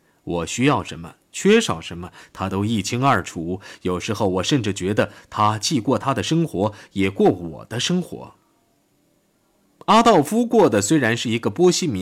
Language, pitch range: Chinese, 100-150 Hz